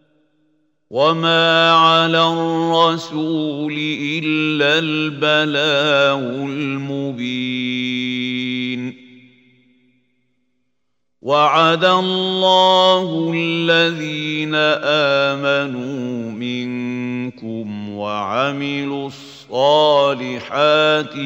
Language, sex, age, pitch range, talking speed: Arabic, male, 50-69, 125-150 Hz, 35 wpm